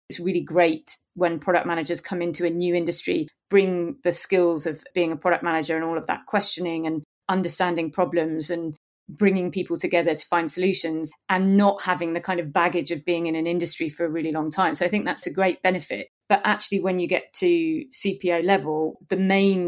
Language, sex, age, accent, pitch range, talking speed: English, female, 30-49, British, 165-185 Hz, 205 wpm